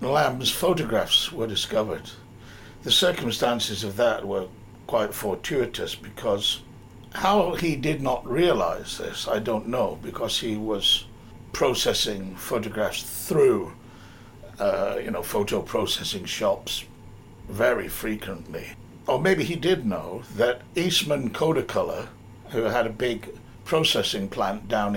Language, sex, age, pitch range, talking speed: English, male, 60-79, 110-145 Hz, 120 wpm